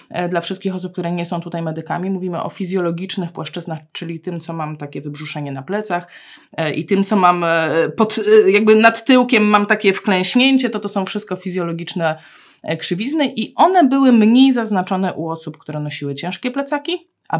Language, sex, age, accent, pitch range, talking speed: Polish, female, 20-39, native, 160-245 Hz, 170 wpm